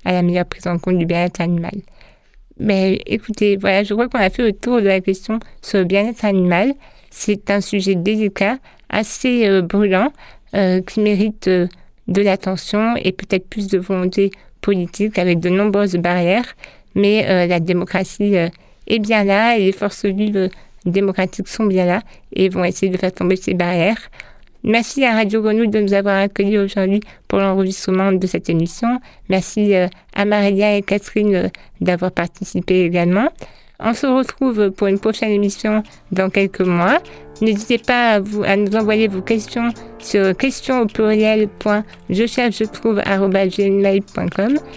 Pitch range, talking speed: 190-220 Hz, 160 wpm